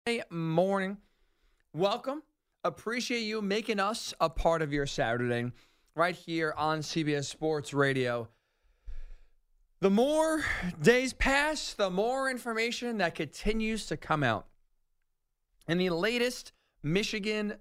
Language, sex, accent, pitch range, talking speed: English, male, American, 160-230 Hz, 110 wpm